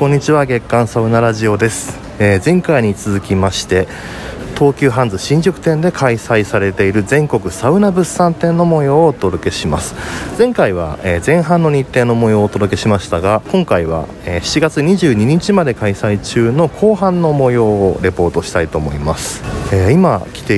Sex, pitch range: male, 90-140 Hz